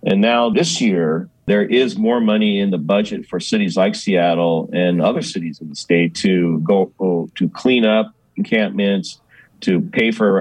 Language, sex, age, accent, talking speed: English, male, 40-59, American, 175 wpm